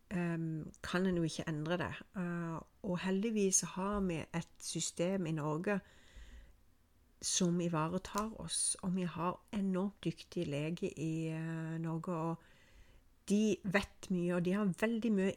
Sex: female